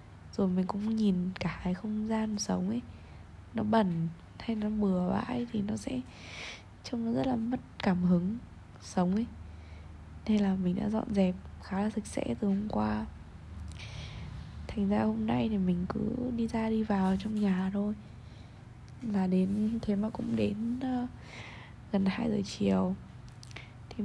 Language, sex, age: Vietnamese, female, 10-29